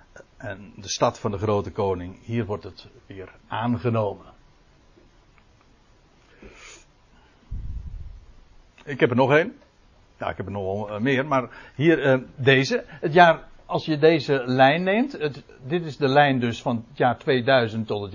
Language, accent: Dutch, Dutch